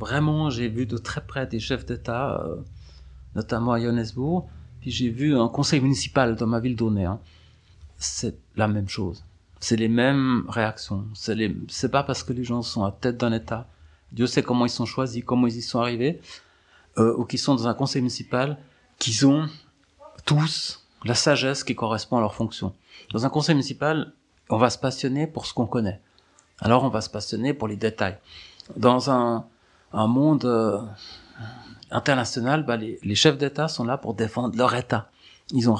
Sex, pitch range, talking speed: male, 115-140 Hz, 185 wpm